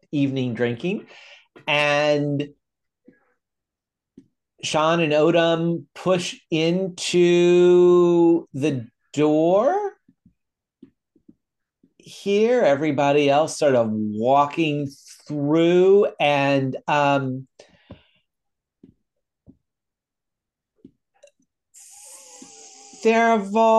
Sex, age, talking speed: male, 50-69, 50 wpm